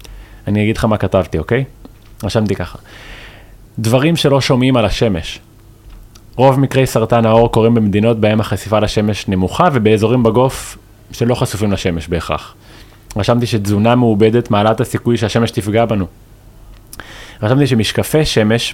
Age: 20-39